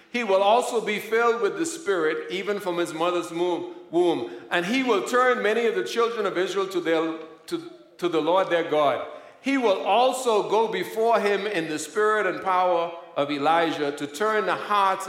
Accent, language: American, English